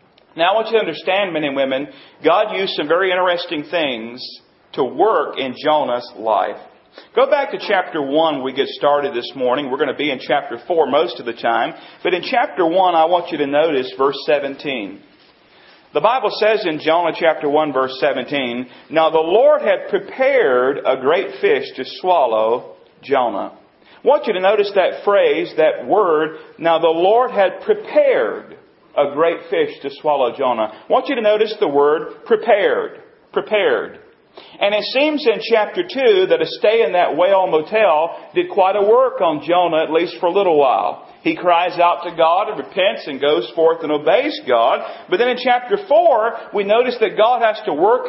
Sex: male